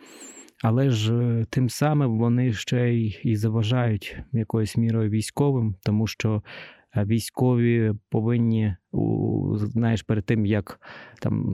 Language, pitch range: Ukrainian, 110-125 Hz